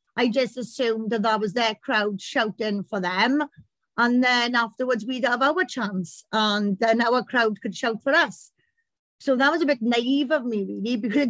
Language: English